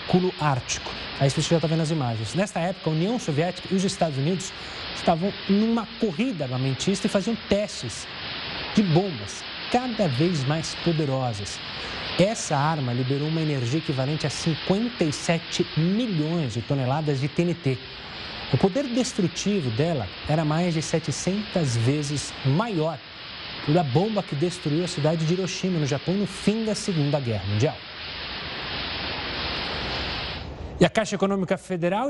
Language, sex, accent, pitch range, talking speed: Portuguese, male, Brazilian, 140-195 Hz, 140 wpm